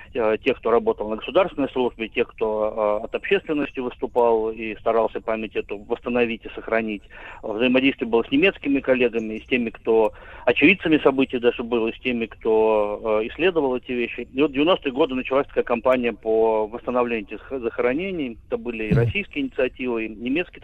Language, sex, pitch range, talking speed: Russian, male, 110-130 Hz, 165 wpm